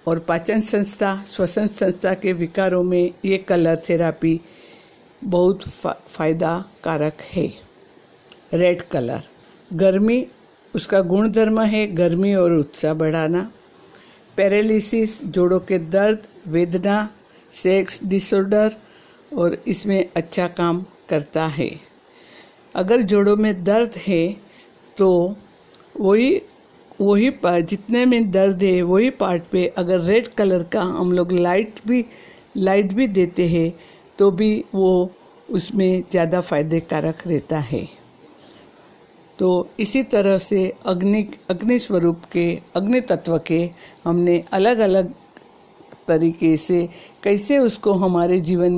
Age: 60-79